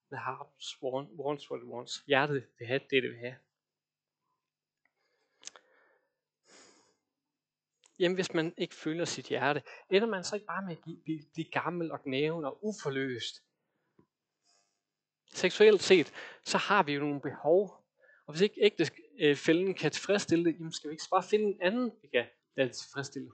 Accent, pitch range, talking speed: native, 145-205 Hz, 155 wpm